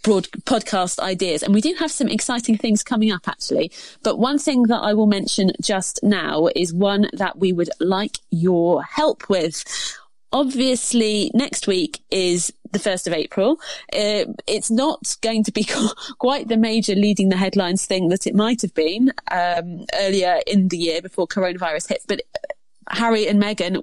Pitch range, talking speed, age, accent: 180-240 Hz, 175 wpm, 30-49, British